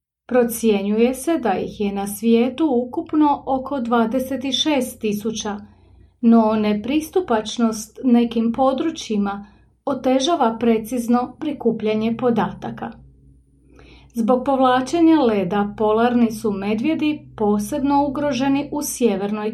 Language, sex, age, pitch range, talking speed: English, female, 30-49, 215-260 Hz, 90 wpm